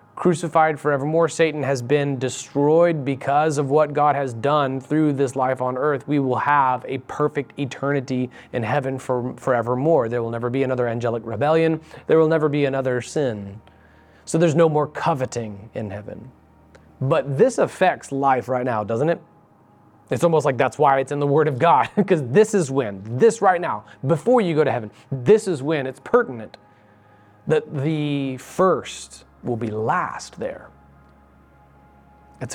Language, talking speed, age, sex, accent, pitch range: English, 165 wpm, 30-49, male, American, 105-150 Hz